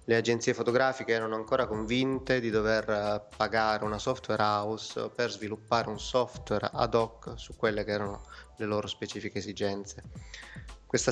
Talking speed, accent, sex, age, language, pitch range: 145 wpm, native, male, 20-39, Italian, 105-120 Hz